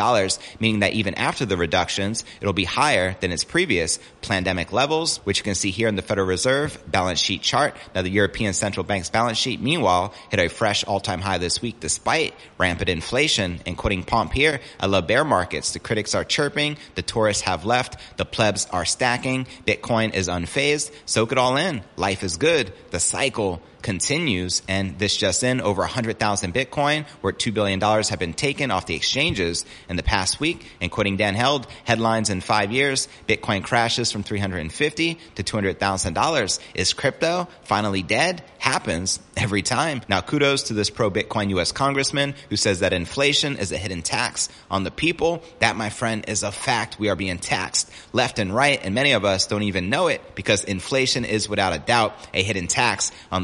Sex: male